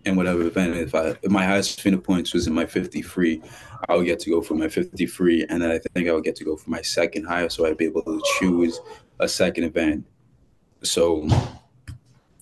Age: 20-39